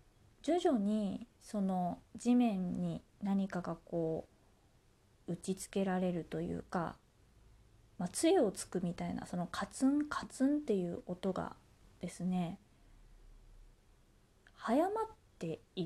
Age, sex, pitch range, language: 20-39, female, 175-250 Hz, Japanese